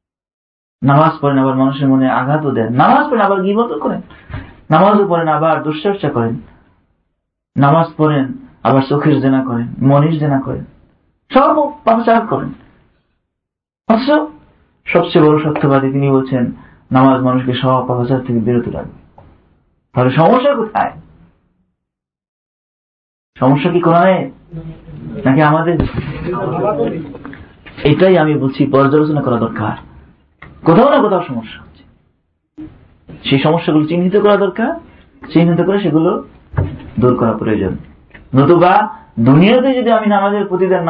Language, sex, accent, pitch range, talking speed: Bengali, male, native, 130-180 Hz, 100 wpm